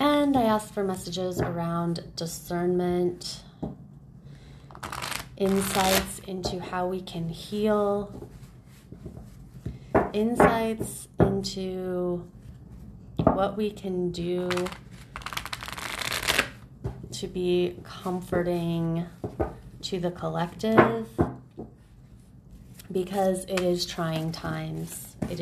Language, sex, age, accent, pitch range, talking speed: English, female, 30-49, American, 170-195 Hz, 75 wpm